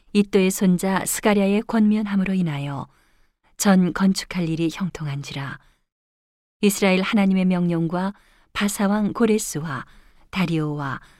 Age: 40-59